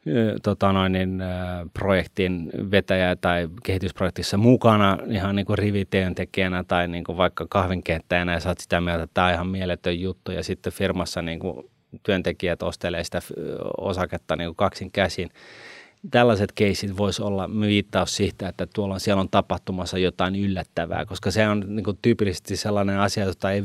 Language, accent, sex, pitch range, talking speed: Finnish, native, male, 90-105 Hz, 145 wpm